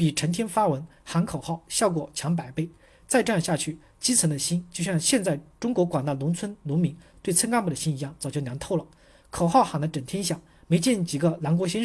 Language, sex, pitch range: Chinese, male, 155-200 Hz